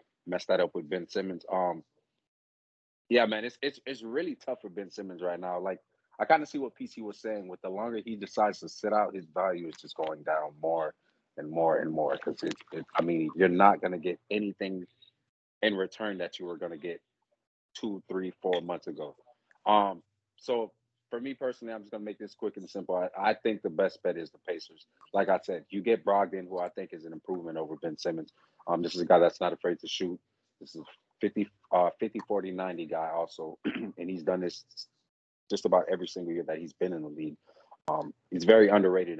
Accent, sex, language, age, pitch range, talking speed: American, male, English, 30-49, 85-105 Hz, 220 wpm